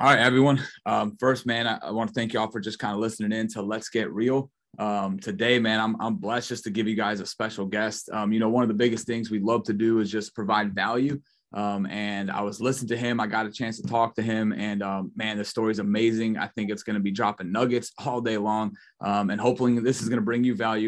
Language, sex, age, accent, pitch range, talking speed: English, male, 30-49, American, 105-120 Hz, 275 wpm